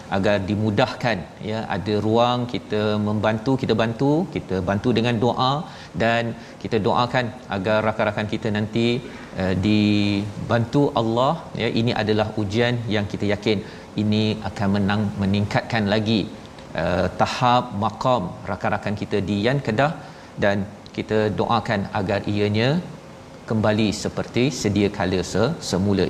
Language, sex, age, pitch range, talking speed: Malayalam, male, 40-59, 105-130 Hz, 120 wpm